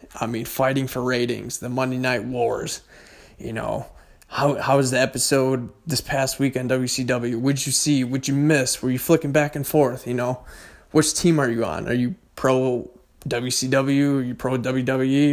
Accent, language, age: American, English, 20-39